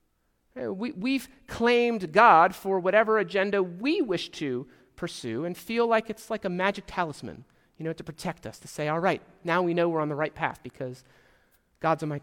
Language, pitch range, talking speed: English, 155-215 Hz, 190 wpm